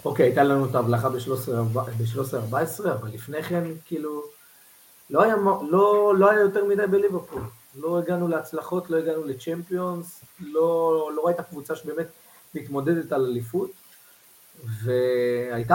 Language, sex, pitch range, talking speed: Hebrew, male, 125-185 Hz, 130 wpm